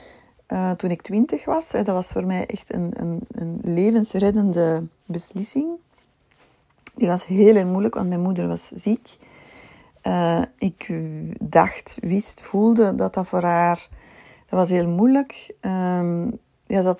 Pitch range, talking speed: 165-210 Hz, 140 wpm